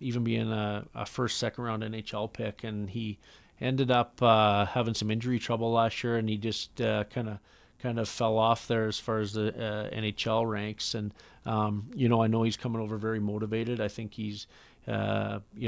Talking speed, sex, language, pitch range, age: 205 wpm, male, English, 110-120 Hz, 40-59